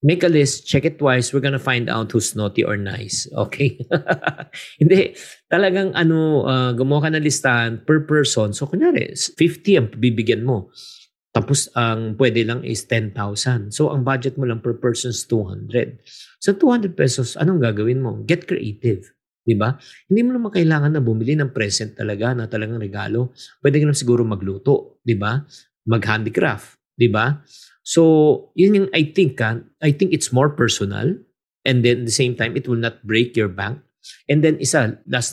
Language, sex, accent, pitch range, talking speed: Filipino, male, native, 115-145 Hz, 180 wpm